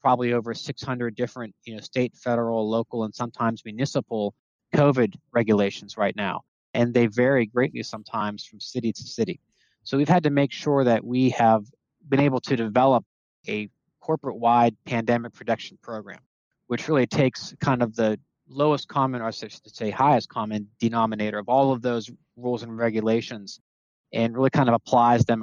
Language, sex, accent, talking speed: English, male, American, 170 wpm